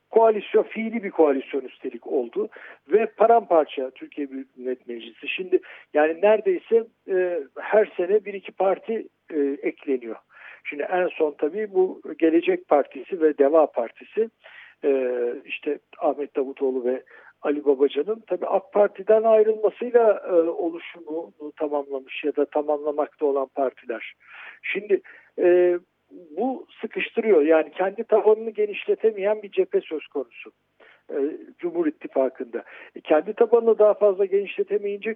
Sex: male